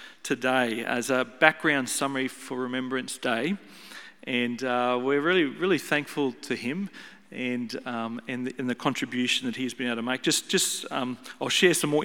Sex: male